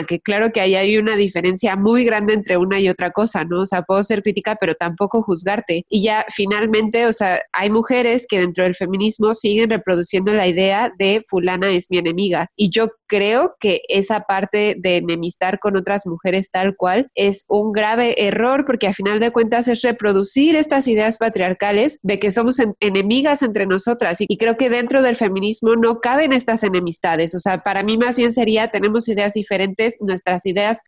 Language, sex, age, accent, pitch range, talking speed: Spanish, female, 20-39, Mexican, 195-235 Hz, 195 wpm